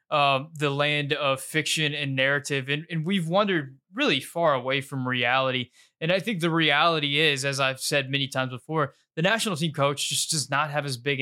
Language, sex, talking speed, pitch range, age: English, male, 205 wpm, 135-155 Hz, 20-39